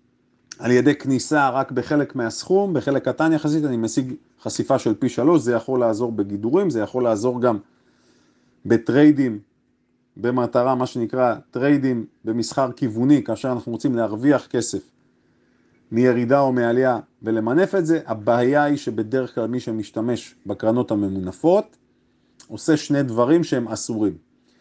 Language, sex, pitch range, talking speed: Hebrew, male, 115-145 Hz, 130 wpm